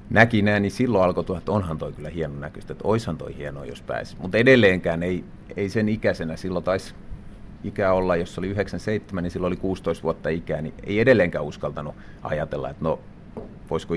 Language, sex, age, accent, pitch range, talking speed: Finnish, male, 30-49, native, 85-105 Hz, 190 wpm